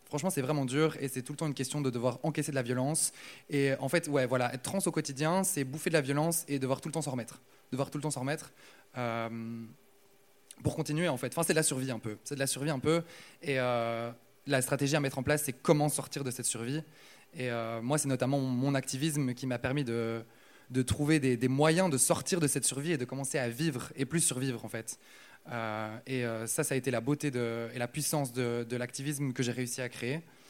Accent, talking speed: French, 250 wpm